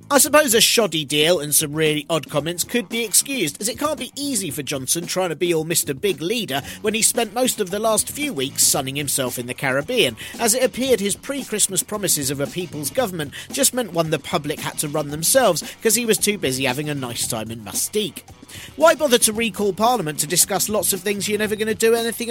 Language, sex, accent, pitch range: English, male, British, 155-215 Hz